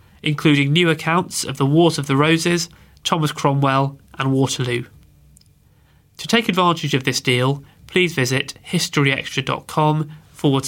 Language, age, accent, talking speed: English, 30-49, British, 130 wpm